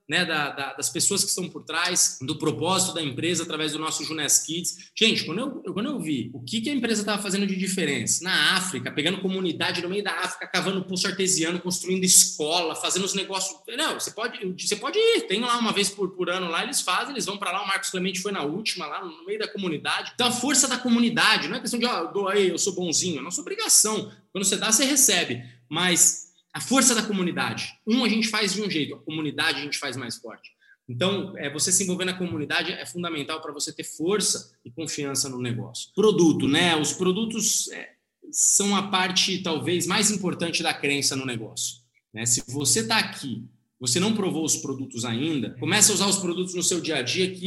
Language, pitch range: Portuguese, 155-200 Hz